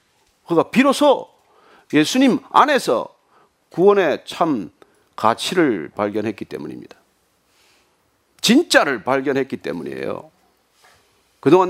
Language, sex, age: Korean, male, 40-59